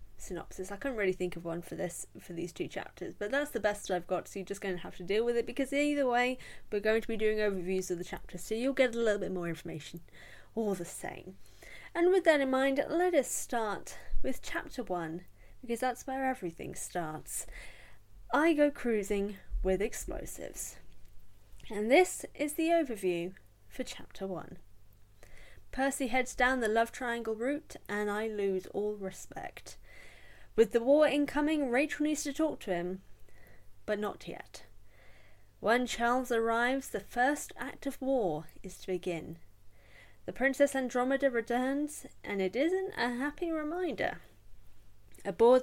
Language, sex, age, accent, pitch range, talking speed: English, female, 10-29, British, 165-265 Hz, 170 wpm